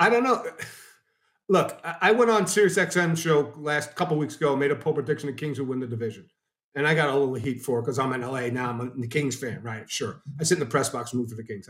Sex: male